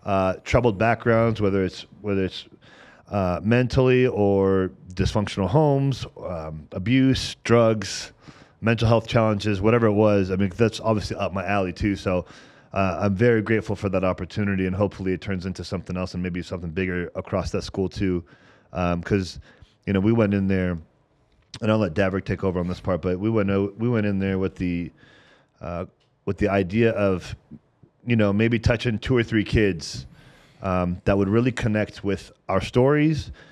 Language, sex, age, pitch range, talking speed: English, male, 30-49, 95-110 Hz, 180 wpm